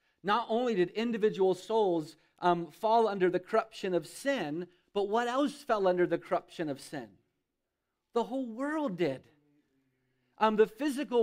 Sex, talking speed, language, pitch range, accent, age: male, 150 wpm, English, 155-220 Hz, American, 40-59